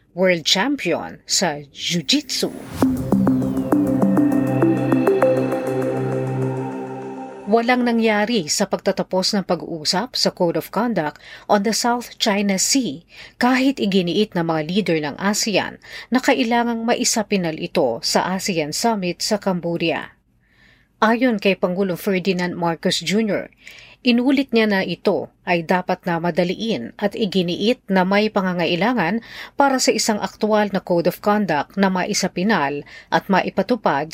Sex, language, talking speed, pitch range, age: female, Filipino, 115 wpm, 175-225 Hz, 40-59